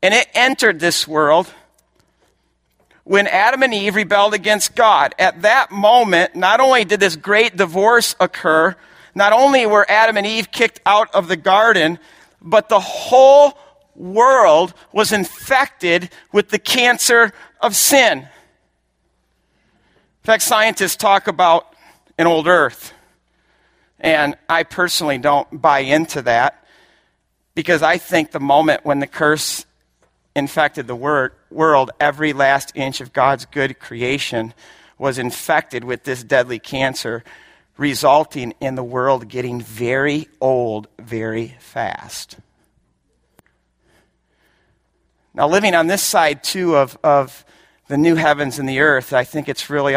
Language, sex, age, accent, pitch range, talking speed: English, male, 50-69, American, 130-200 Hz, 135 wpm